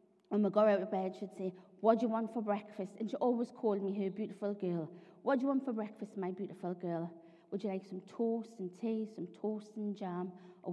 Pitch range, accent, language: 180-220 Hz, British, English